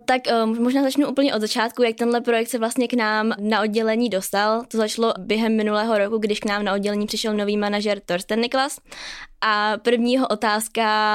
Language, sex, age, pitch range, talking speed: Czech, female, 10-29, 200-230 Hz, 185 wpm